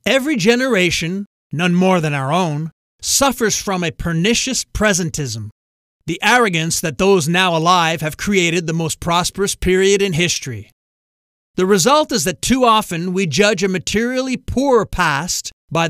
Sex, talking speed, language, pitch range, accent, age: male, 145 wpm, English, 160-210 Hz, American, 40-59